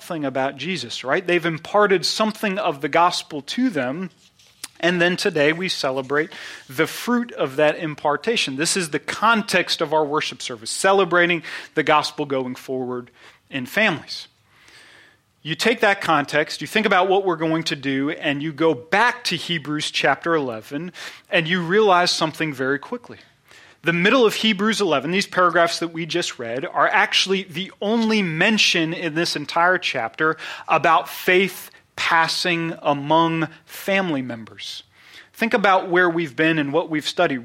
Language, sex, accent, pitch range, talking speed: English, male, American, 145-180 Hz, 155 wpm